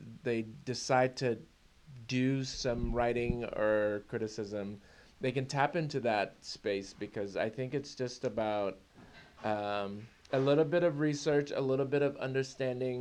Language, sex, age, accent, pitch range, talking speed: English, male, 30-49, American, 95-125 Hz, 145 wpm